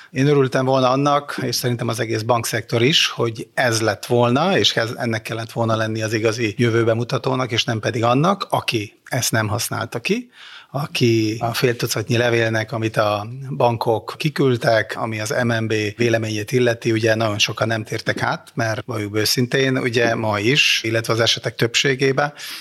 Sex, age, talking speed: male, 30-49, 160 wpm